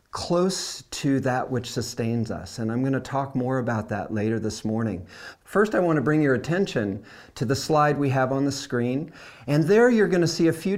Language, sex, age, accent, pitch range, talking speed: English, male, 40-59, American, 120-160 Hz, 225 wpm